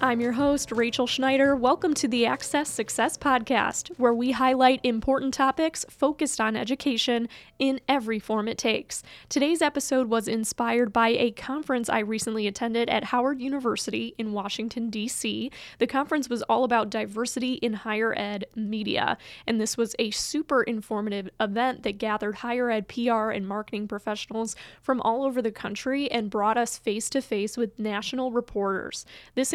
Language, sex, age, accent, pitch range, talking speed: English, female, 10-29, American, 220-265 Hz, 160 wpm